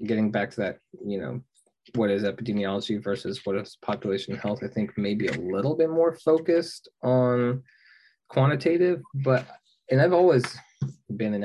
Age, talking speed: 20-39, 155 wpm